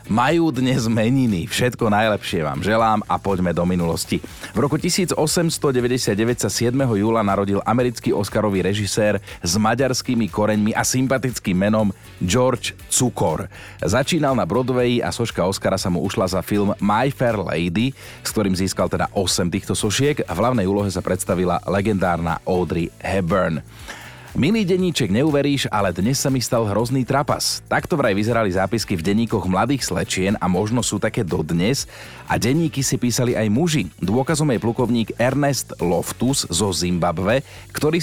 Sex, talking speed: male, 150 wpm